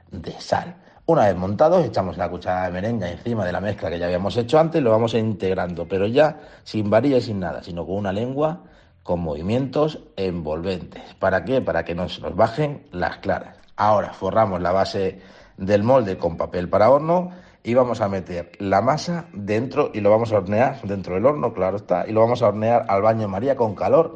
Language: Spanish